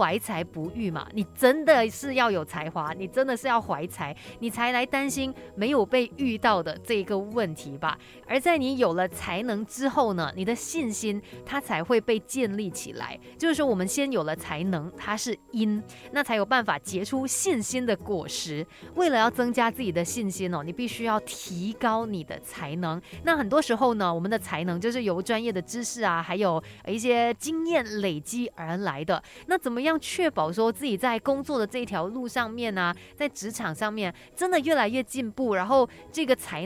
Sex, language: female, Chinese